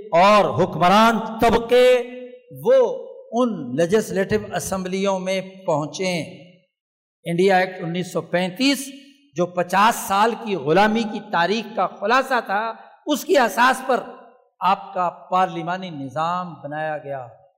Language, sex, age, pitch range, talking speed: Urdu, male, 60-79, 190-255 Hz, 110 wpm